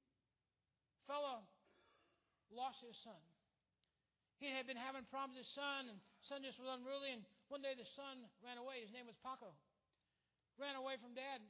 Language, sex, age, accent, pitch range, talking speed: English, male, 60-79, American, 205-265 Hz, 170 wpm